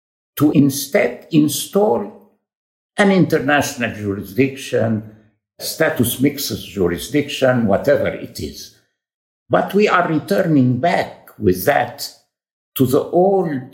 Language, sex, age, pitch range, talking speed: English, male, 60-79, 120-170 Hz, 95 wpm